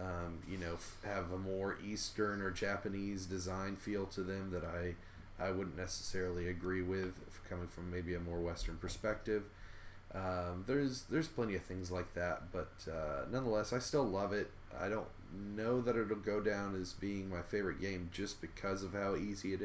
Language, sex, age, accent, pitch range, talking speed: English, male, 30-49, American, 90-105 Hz, 185 wpm